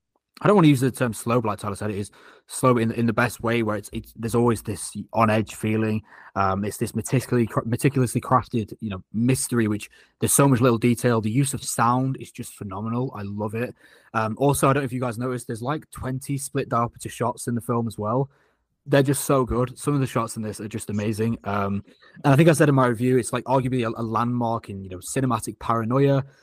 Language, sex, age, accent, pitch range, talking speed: English, male, 20-39, British, 110-135 Hz, 245 wpm